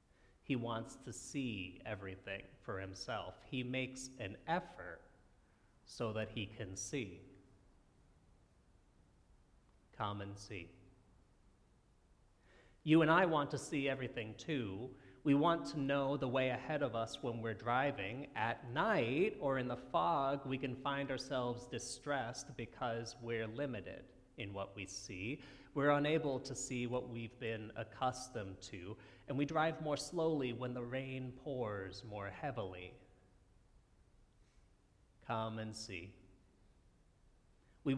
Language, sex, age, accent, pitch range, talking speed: English, male, 40-59, American, 105-140 Hz, 130 wpm